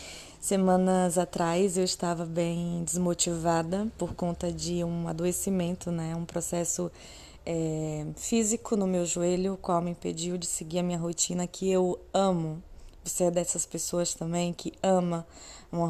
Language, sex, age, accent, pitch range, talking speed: Portuguese, female, 20-39, Brazilian, 170-195 Hz, 145 wpm